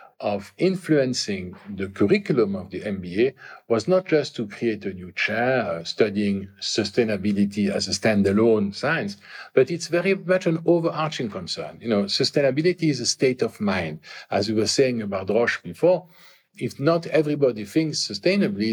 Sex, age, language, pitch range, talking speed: male, 50-69, English, 110-170 Hz, 155 wpm